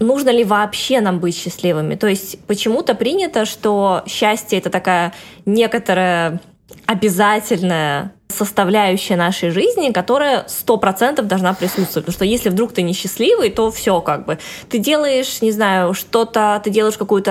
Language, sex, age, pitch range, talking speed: Russian, female, 20-39, 185-225 Hz, 140 wpm